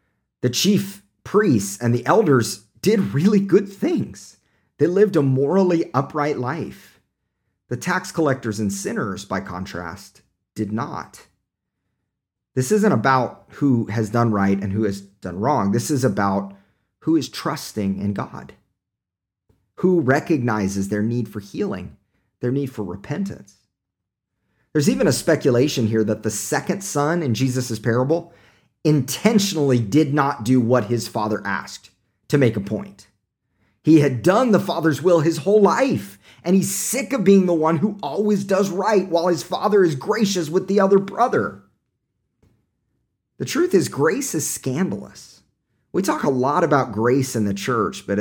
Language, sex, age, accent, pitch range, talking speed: English, male, 40-59, American, 105-170 Hz, 155 wpm